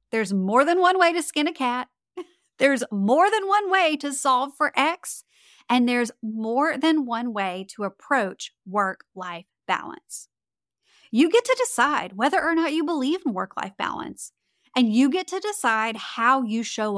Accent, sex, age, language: American, female, 30-49, English